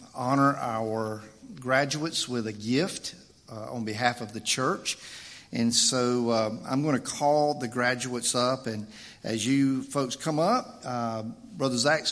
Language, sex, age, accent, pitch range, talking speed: English, male, 50-69, American, 125-165 Hz, 155 wpm